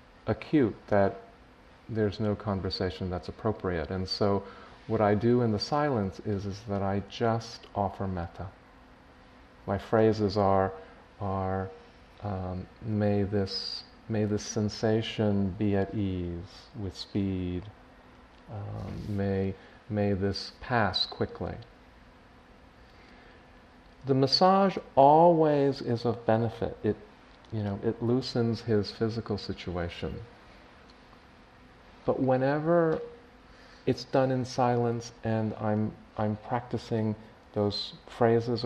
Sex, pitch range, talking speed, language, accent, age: male, 100-120 Hz, 105 wpm, English, American, 40-59